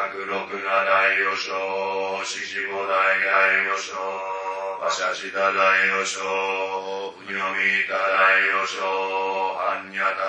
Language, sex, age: Japanese, male, 30-49